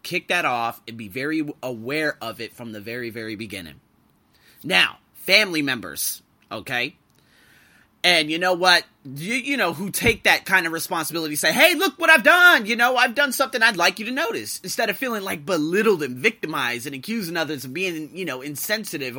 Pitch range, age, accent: 135-195 Hz, 30-49, American